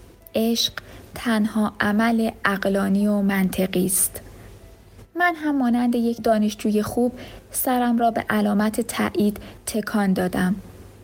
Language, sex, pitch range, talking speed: Persian, female, 180-235 Hz, 110 wpm